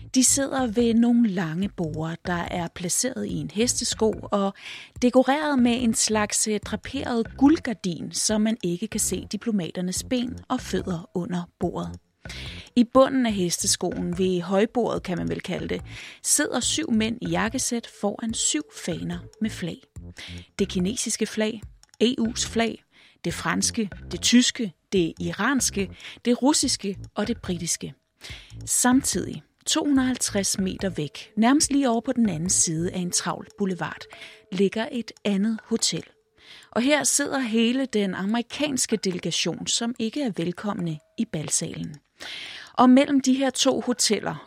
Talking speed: 140 wpm